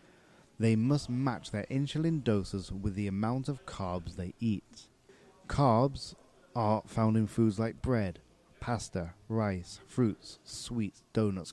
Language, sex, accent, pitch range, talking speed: English, male, British, 95-120 Hz, 130 wpm